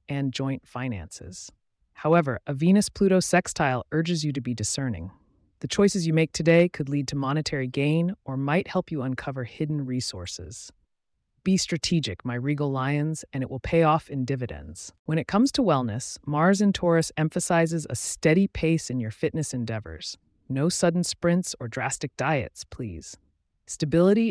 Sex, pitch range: female, 120-165 Hz